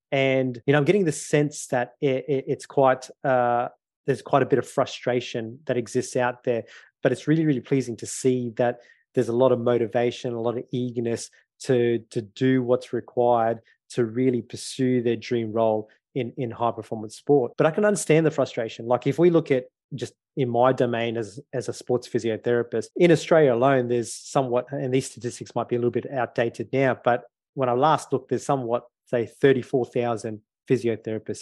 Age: 20-39